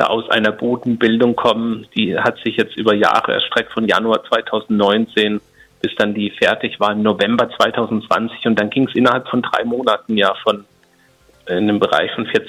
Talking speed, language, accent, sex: 170 wpm, German, German, male